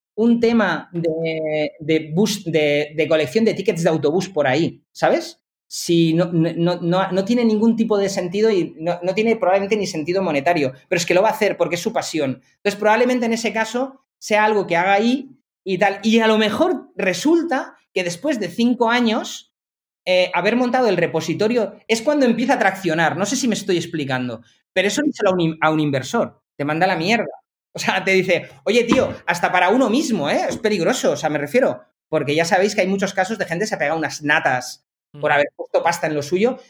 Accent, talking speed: Spanish, 220 wpm